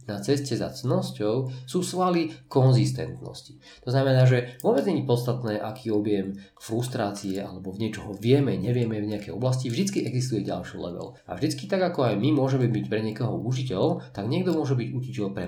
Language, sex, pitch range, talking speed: Slovak, male, 105-130 Hz, 175 wpm